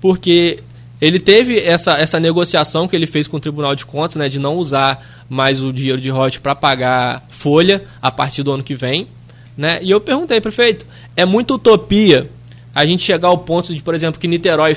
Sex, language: male, Portuguese